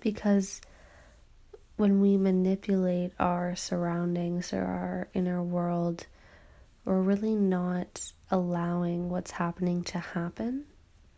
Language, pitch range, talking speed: English, 170-190 Hz, 95 wpm